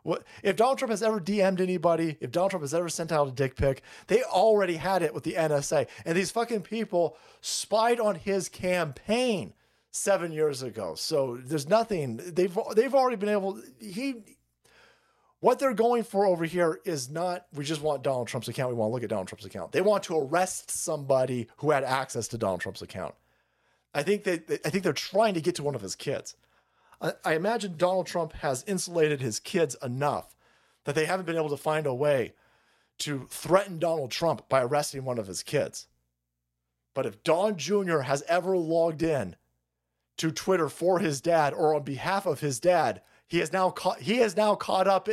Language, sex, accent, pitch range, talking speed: English, male, American, 145-205 Hz, 195 wpm